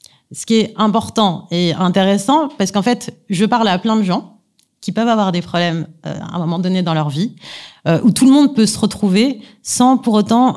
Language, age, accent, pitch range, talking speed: French, 30-49, French, 180-225 Hz, 220 wpm